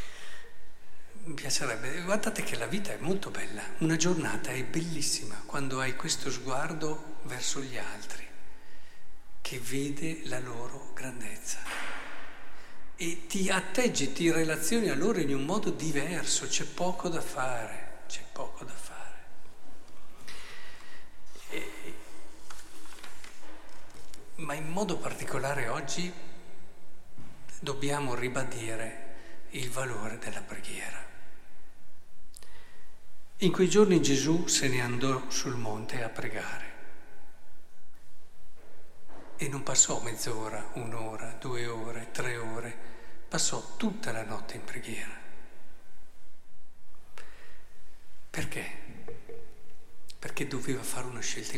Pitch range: 120-165 Hz